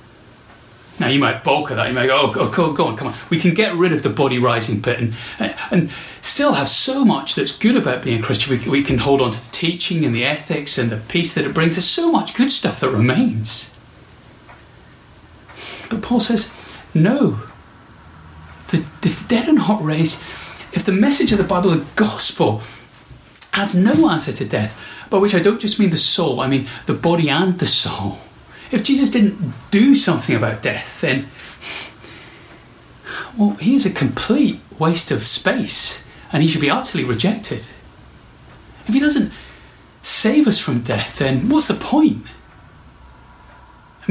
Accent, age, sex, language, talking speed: British, 30-49, male, English, 180 wpm